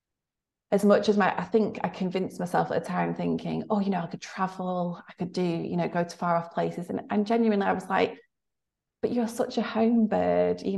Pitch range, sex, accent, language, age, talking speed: 170-215 Hz, female, British, English, 30-49, 235 wpm